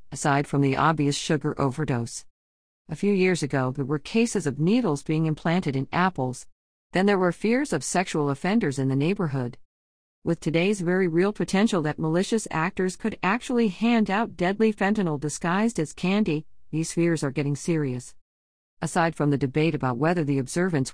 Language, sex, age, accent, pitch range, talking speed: English, female, 50-69, American, 140-180 Hz, 170 wpm